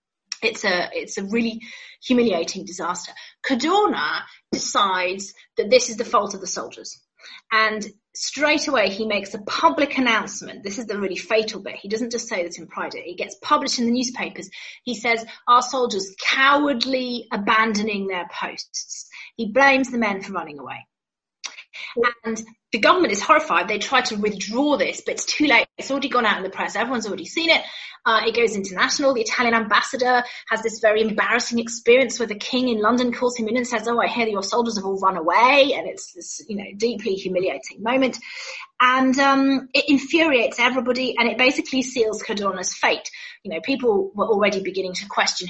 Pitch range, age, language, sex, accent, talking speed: 200-260 Hz, 30-49, English, female, British, 190 wpm